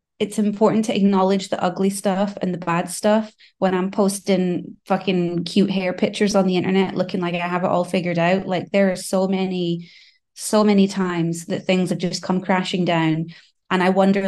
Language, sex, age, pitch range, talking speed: English, female, 20-39, 185-215 Hz, 200 wpm